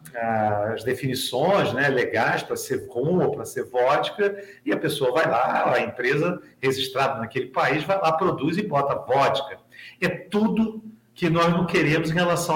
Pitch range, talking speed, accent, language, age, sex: 135-180 Hz, 165 wpm, Brazilian, Portuguese, 40-59, male